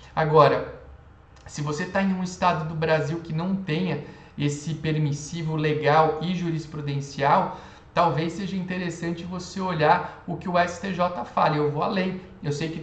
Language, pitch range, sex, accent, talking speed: Portuguese, 150-180 Hz, male, Brazilian, 155 wpm